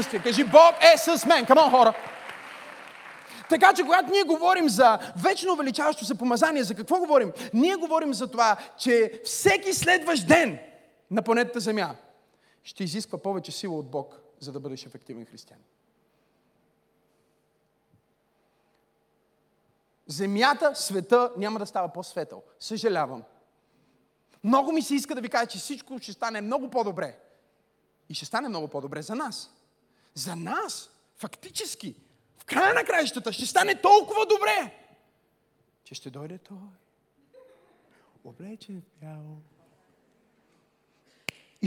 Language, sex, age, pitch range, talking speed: Bulgarian, male, 30-49, 200-320 Hz, 125 wpm